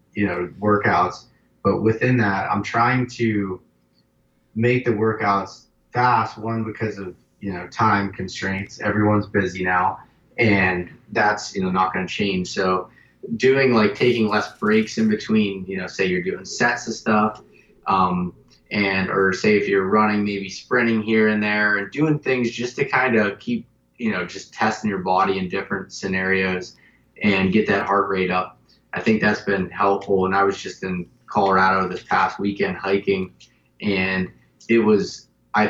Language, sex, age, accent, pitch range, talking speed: English, male, 20-39, American, 95-105 Hz, 170 wpm